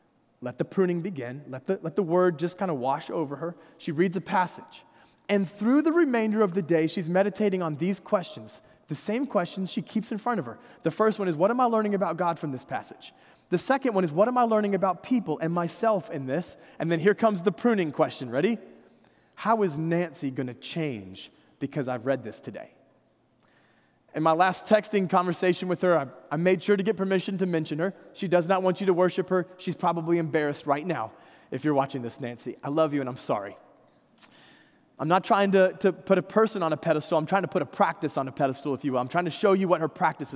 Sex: male